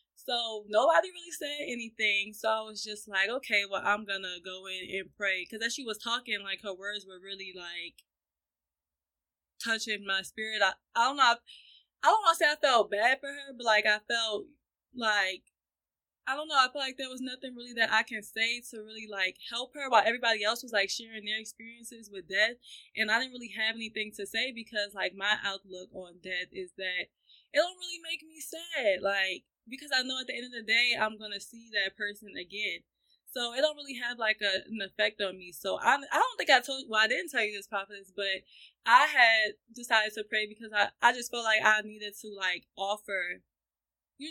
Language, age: English, 20-39